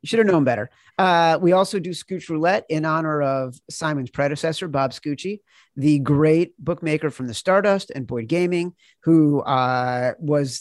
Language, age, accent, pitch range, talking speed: English, 40-59, American, 130-165 Hz, 170 wpm